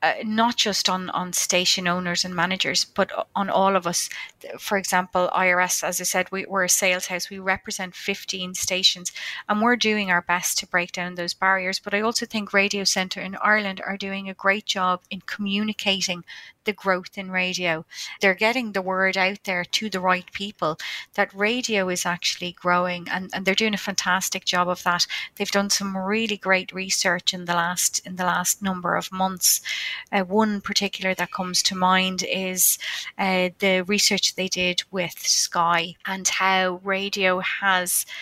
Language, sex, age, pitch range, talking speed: English, female, 30-49, 180-195 Hz, 180 wpm